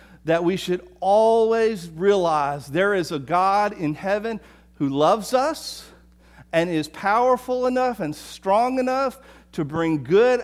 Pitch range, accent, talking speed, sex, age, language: 125-190 Hz, American, 140 wpm, male, 50-69, English